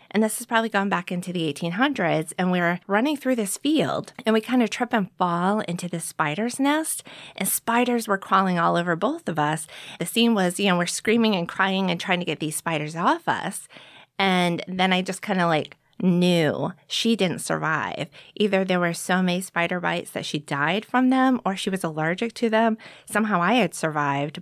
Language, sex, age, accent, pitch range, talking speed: English, female, 30-49, American, 170-220 Hz, 210 wpm